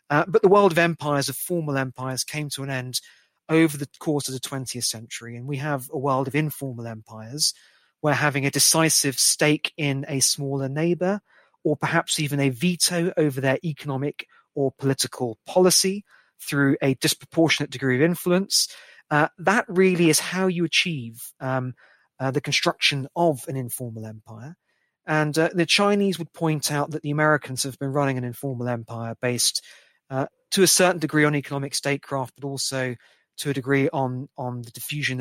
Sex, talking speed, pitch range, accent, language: male, 175 wpm, 130-155 Hz, British, English